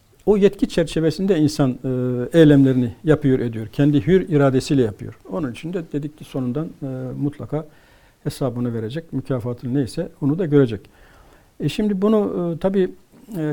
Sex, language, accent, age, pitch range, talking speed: male, Turkish, native, 60-79, 135-170 Hz, 145 wpm